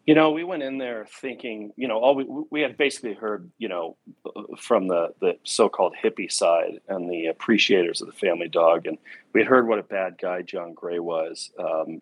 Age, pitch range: 40-59, 95-125 Hz